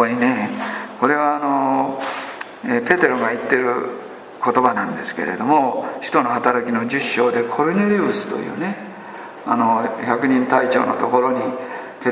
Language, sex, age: Japanese, male, 50-69